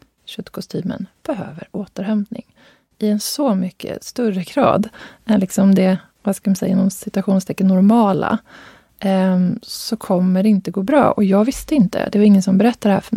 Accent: native